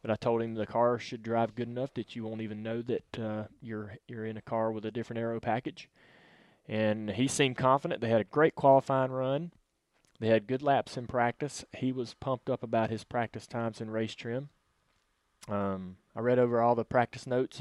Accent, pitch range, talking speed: American, 105-120 Hz, 210 wpm